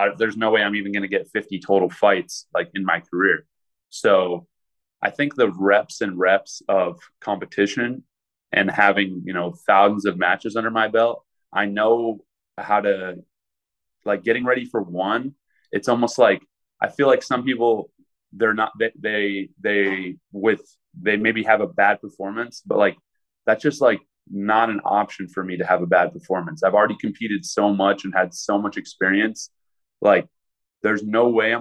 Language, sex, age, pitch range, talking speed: English, male, 20-39, 95-110 Hz, 175 wpm